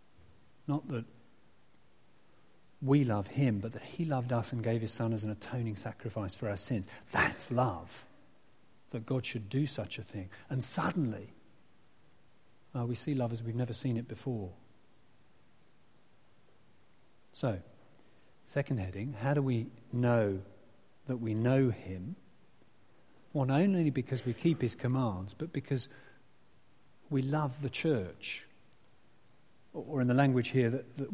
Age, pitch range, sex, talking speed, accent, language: 40-59, 110-135 Hz, male, 145 wpm, British, English